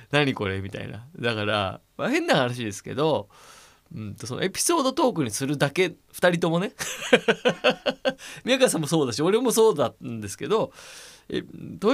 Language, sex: Japanese, male